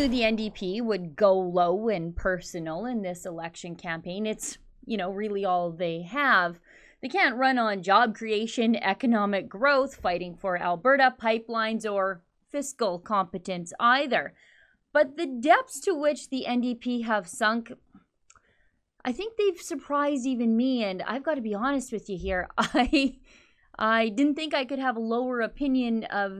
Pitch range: 190-260 Hz